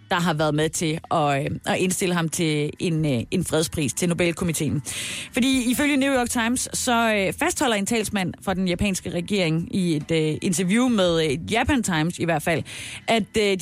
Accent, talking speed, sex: native, 170 wpm, female